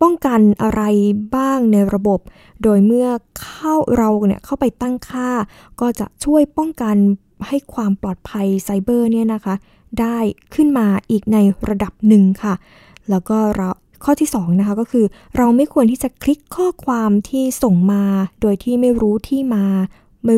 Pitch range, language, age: 200-240 Hz, Thai, 20-39